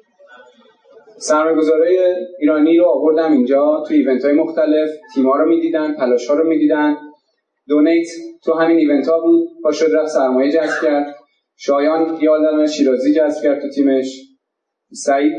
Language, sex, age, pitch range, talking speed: Persian, male, 30-49, 130-160 Hz, 135 wpm